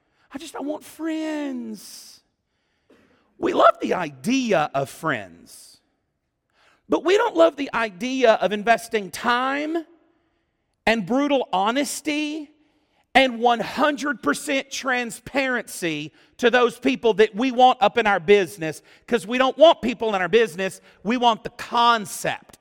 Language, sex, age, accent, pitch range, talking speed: English, male, 40-59, American, 205-290 Hz, 125 wpm